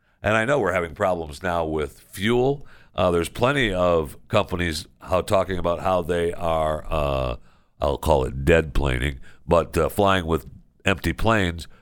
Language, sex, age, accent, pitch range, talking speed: English, male, 60-79, American, 80-105 Hz, 160 wpm